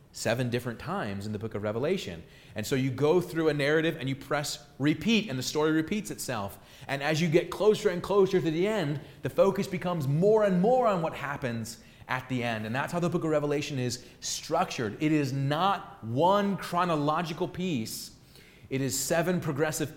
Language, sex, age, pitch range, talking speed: English, male, 30-49, 125-165 Hz, 195 wpm